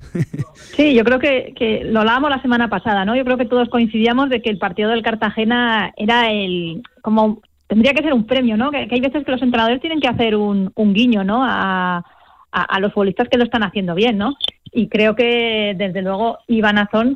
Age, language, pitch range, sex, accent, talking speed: 30-49, Spanish, 200-240 Hz, female, Spanish, 220 wpm